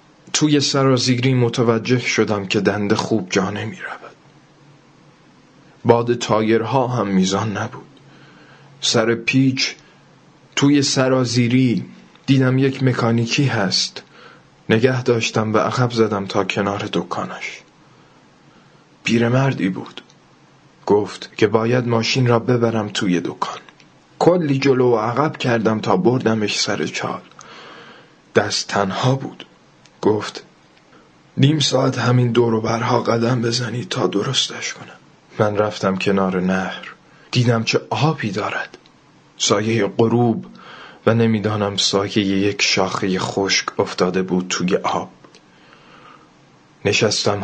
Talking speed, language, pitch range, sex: 110 wpm, Persian, 105-130 Hz, male